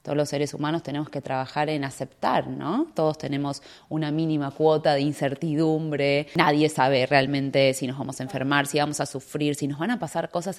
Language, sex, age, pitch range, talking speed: Spanish, female, 20-39, 140-165 Hz, 200 wpm